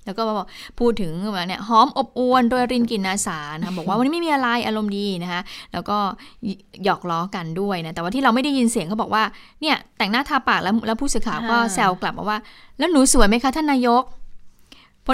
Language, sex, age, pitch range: Thai, female, 20-39, 190-235 Hz